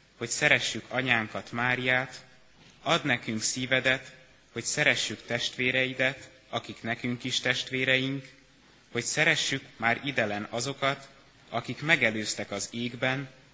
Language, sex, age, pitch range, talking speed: Hungarian, male, 30-49, 115-135 Hz, 100 wpm